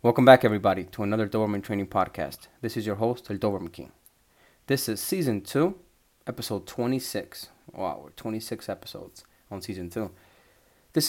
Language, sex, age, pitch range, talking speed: English, male, 30-49, 100-120 Hz, 155 wpm